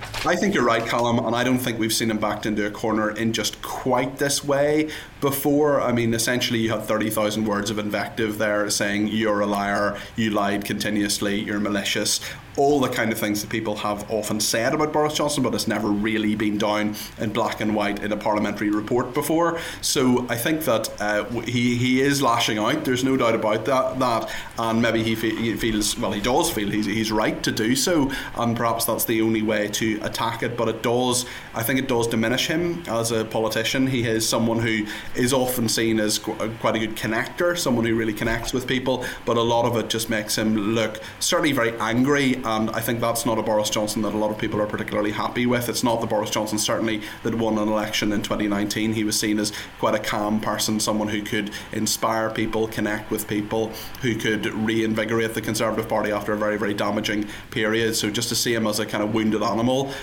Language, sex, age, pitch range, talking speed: English, male, 30-49, 105-115 Hz, 220 wpm